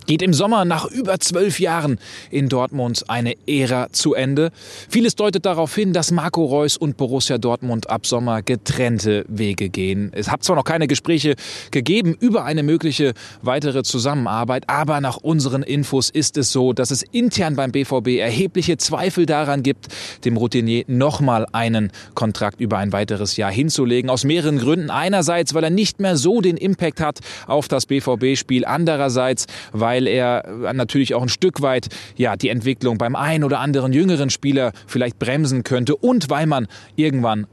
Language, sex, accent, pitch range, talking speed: German, male, German, 120-160 Hz, 170 wpm